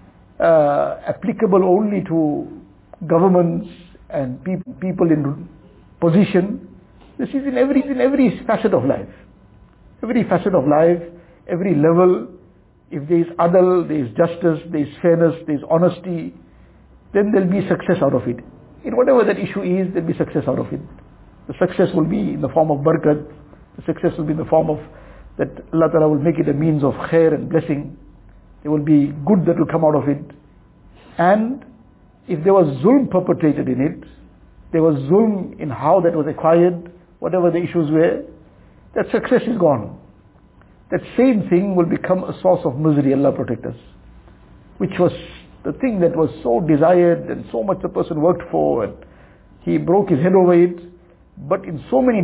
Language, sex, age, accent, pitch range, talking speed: English, male, 60-79, Indian, 155-185 Hz, 180 wpm